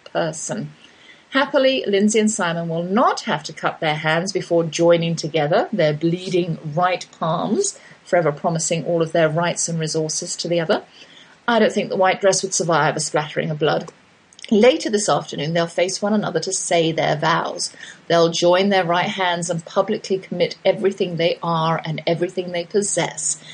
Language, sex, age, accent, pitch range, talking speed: English, female, 40-59, British, 165-210 Hz, 175 wpm